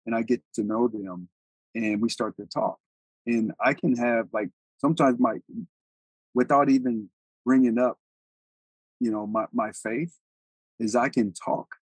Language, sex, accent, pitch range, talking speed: English, male, American, 95-125 Hz, 155 wpm